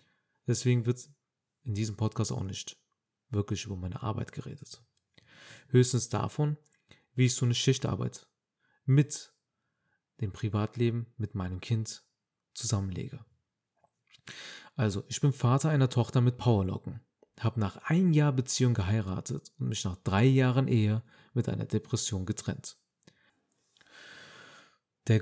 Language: German